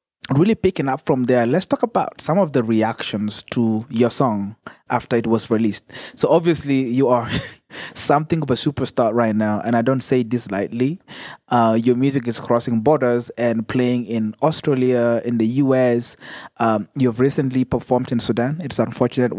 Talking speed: 175 wpm